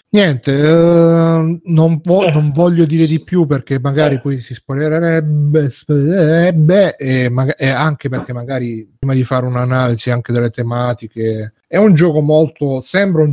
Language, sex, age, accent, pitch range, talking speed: Italian, male, 30-49, native, 120-145 Hz, 135 wpm